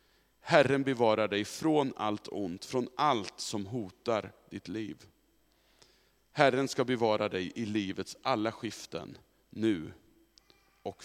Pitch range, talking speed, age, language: 110-155 Hz, 120 wpm, 40-59, Swedish